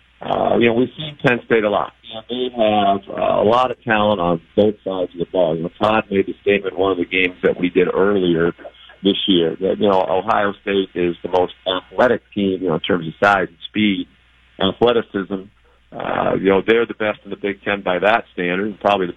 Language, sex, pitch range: English, male, 90-110 Hz